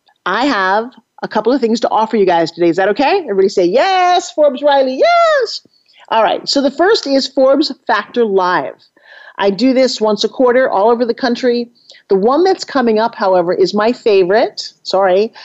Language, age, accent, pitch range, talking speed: English, 40-59, American, 205-255 Hz, 190 wpm